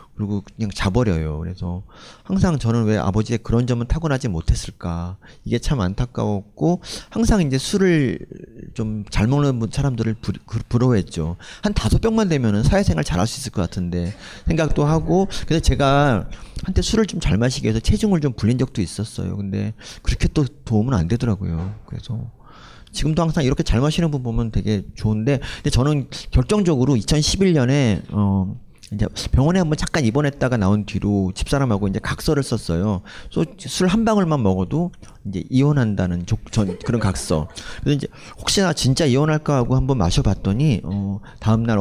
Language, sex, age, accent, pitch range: Korean, male, 30-49, native, 100-140 Hz